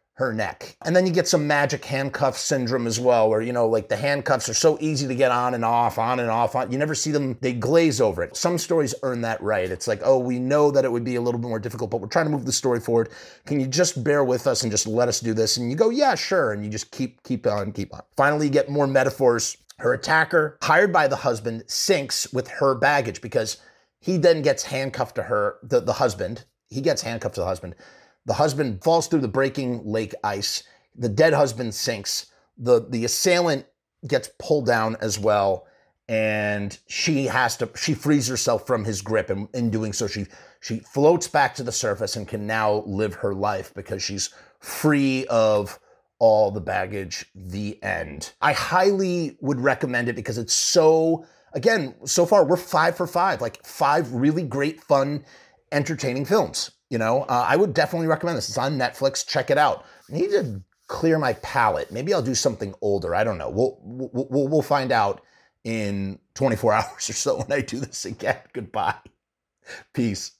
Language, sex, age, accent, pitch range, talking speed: English, male, 30-49, American, 115-150 Hz, 210 wpm